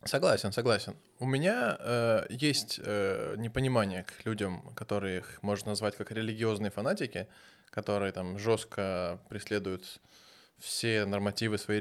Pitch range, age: 100-115 Hz, 20-39